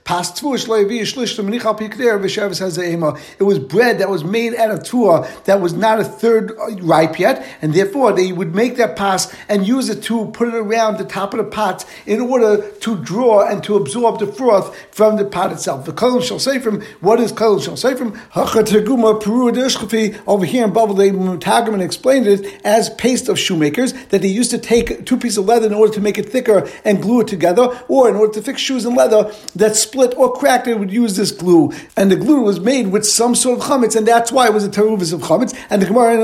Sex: male